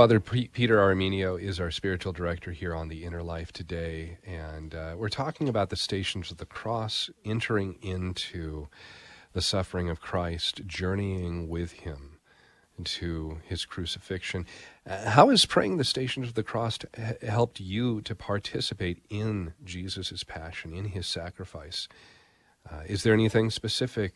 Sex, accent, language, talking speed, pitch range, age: male, American, English, 150 wpm, 85-105 Hz, 40-59